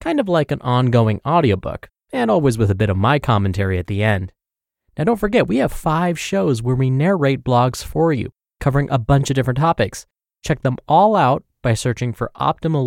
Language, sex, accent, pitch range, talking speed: English, male, American, 110-165 Hz, 205 wpm